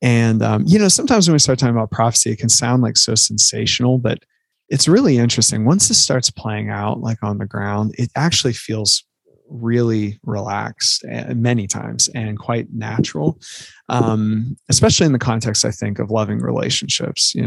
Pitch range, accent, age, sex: 105-130 Hz, American, 20-39, male